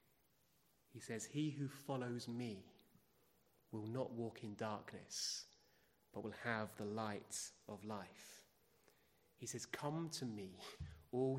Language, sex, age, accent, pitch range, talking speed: English, male, 30-49, British, 115-155 Hz, 125 wpm